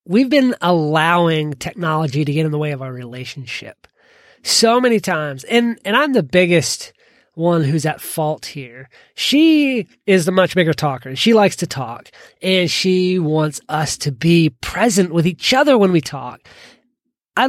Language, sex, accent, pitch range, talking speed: English, male, American, 150-190 Hz, 170 wpm